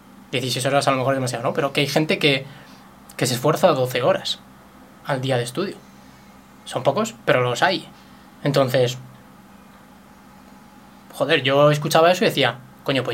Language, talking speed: Spanish, 165 wpm